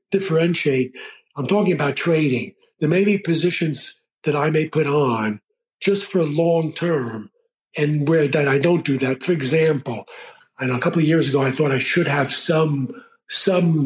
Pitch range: 130-175 Hz